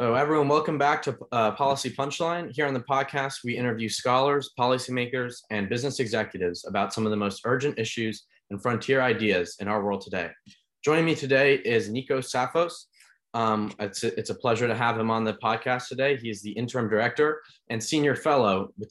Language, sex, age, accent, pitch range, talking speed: English, male, 20-39, American, 110-135 Hz, 195 wpm